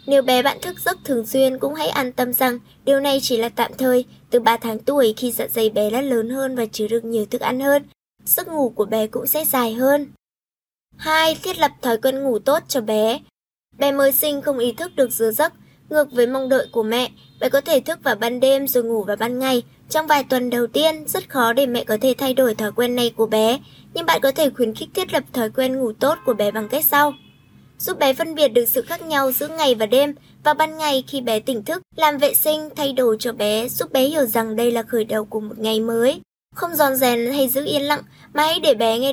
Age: 10-29